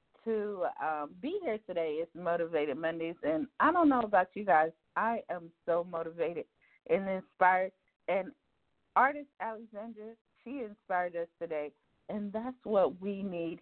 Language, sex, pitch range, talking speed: English, female, 170-245 Hz, 145 wpm